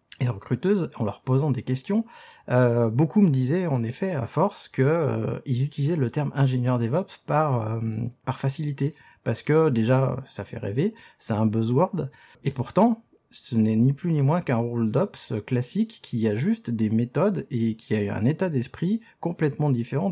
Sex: male